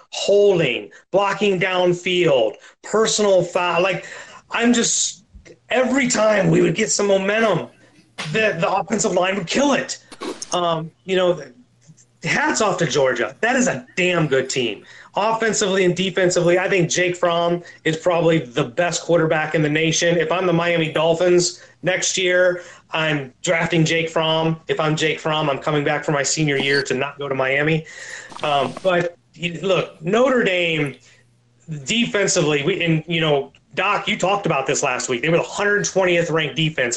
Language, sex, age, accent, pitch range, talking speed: English, male, 30-49, American, 150-190 Hz, 165 wpm